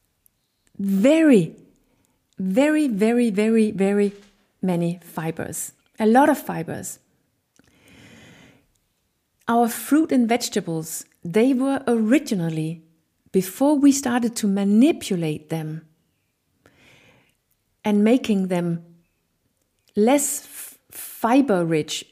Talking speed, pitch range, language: 80 wpm, 180-240 Hz, English